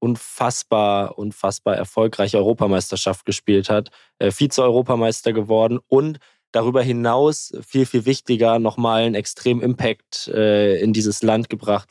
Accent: German